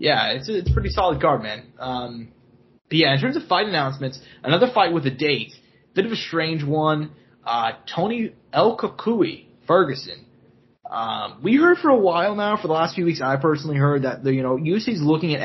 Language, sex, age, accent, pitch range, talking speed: English, male, 20-39, American, 130-160 Hz, 200 wpm